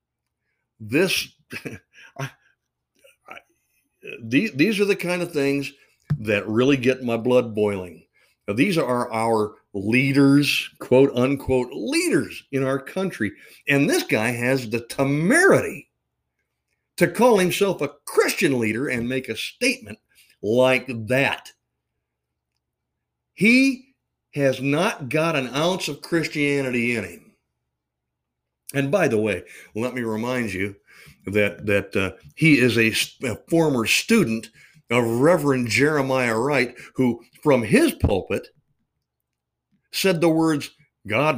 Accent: American